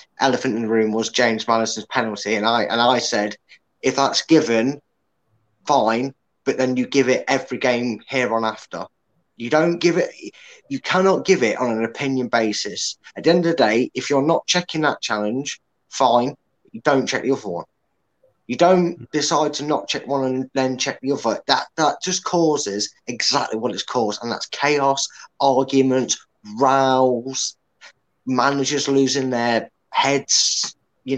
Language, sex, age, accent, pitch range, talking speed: English, male, 20-39, British, 115-145 Hz, 170 wpm